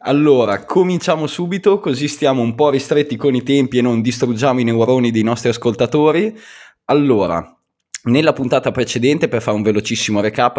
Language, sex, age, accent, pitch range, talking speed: Italian, male, 20-39, native, 95-115 Hz, 160 wpm